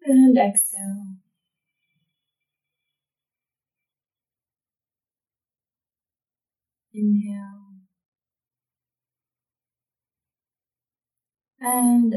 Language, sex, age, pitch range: English, female, 30-49, 175-205 Hz